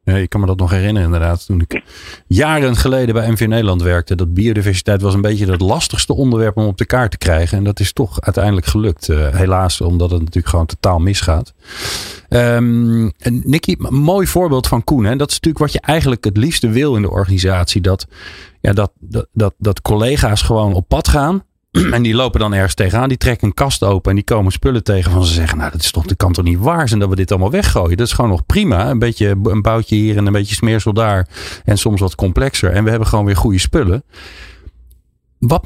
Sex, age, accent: male, 40-59, Dutch